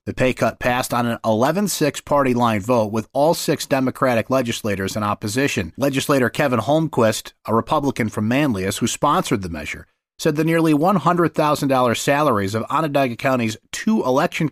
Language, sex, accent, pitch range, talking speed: English, male, American, 115-145 Hz, 155 wpm